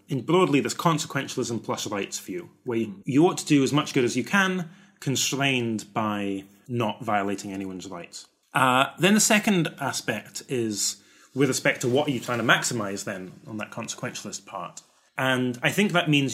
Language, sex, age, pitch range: English, male, 30-49, 105-140 Hz